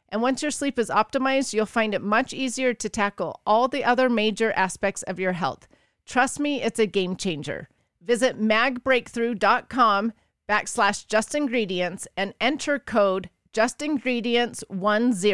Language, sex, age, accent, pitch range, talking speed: English, female, 30-49, American, 200-255 Hz, 135 wpm